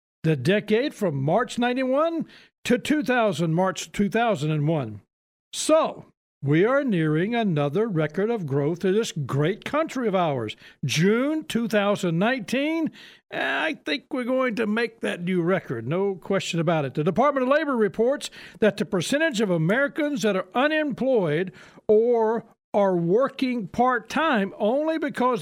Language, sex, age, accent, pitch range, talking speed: English, male, 60-79, American, 180-245 Hz, 135 wpm